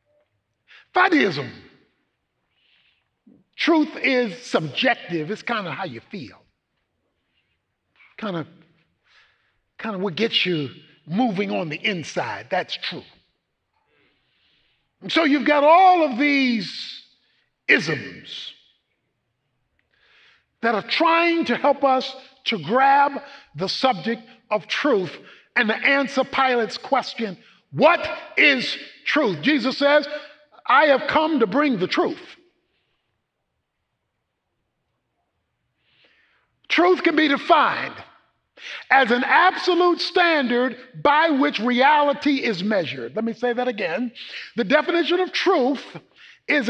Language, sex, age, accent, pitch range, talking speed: English, male, 50-69, American, 230-305 Hz, 105 wpm